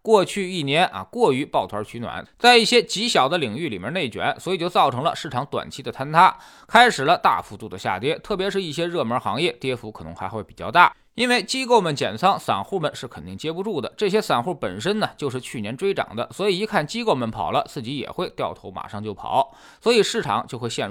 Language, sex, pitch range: Chinese, male, 135-215 Hz